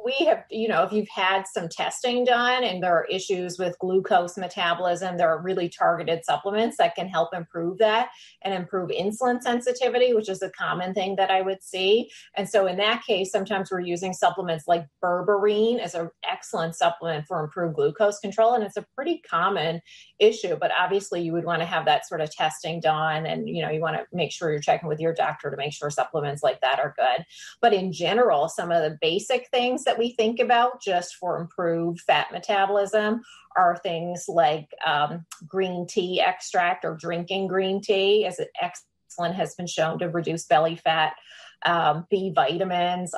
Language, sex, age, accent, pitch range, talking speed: English, female, 30-49, American, 170-220 Hz, 190 wpm